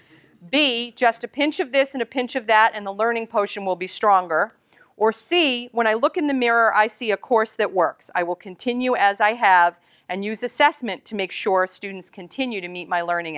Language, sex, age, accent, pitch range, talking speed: English, female, 40-59, American, 190-255 Hz, 225 wpm